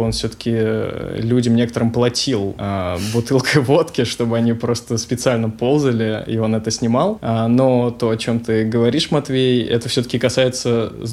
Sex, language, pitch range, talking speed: male, Russian, 115-135 Hz, 155 wpm